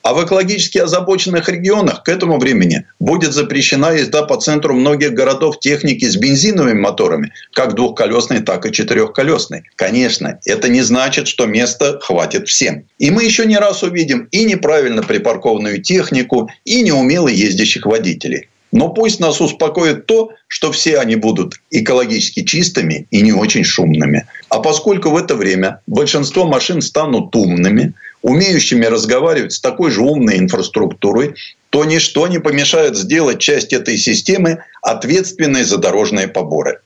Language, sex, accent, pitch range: Russian, male, native, 145-205 Hz